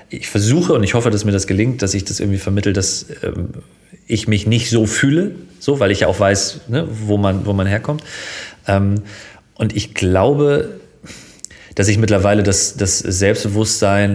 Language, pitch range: German, 95-120 Hz